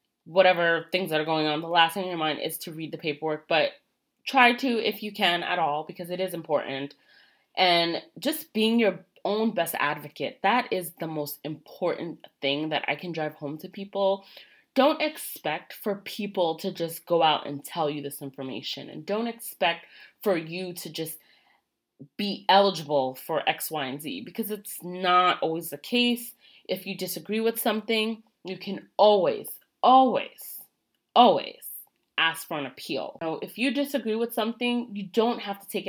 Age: 20-39